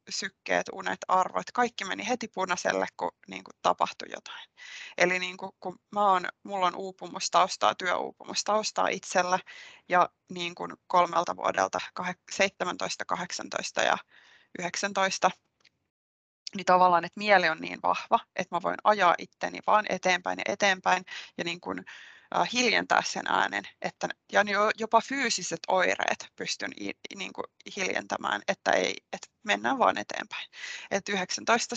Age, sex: 20-39, female